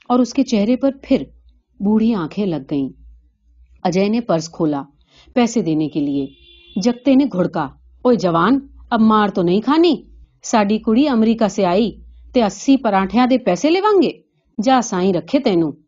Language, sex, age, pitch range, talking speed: Urdu, female, 40-59, 165-245 Hz, 75 wpm